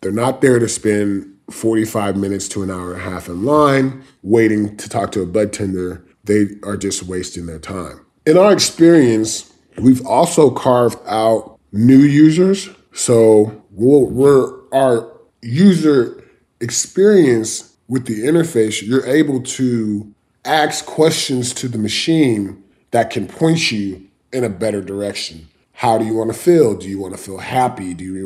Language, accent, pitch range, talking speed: English, American, 100-130 Hz, 160 wpm